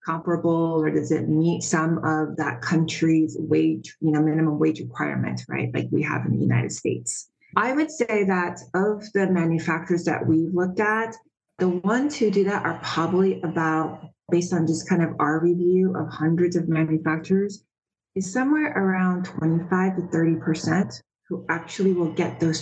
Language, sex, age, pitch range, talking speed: English, female, 30-49, 155-185 Hz, 170 wpm